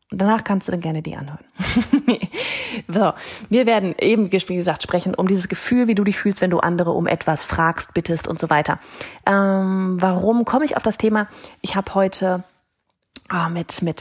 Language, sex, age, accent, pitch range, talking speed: German, female, 30-49, German, 175-230 Hz, 190 wpm